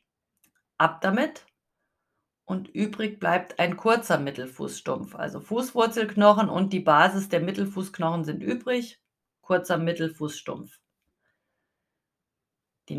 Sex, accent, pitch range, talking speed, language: female, German, 165-215 Hz, 90 wpm, German